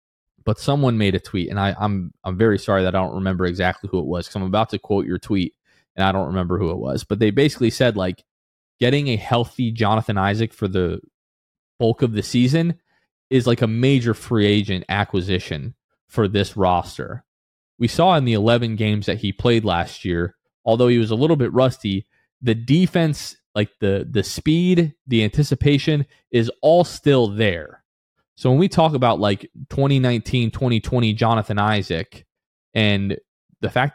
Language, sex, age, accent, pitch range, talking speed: English, male, 20-39, American, 100-135 Hz, 180 wpm